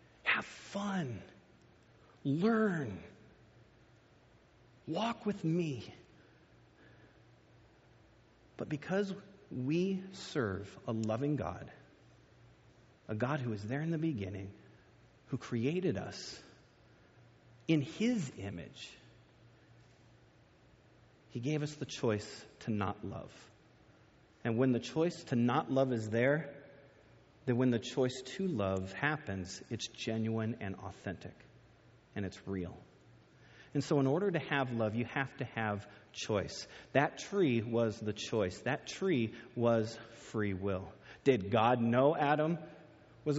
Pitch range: 110-150 Hz